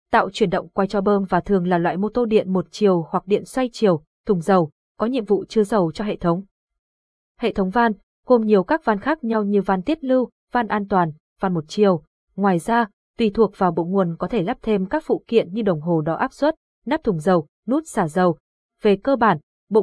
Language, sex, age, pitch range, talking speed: Vietnamese, female, 20-39, 180-225 Hz, 235 wpm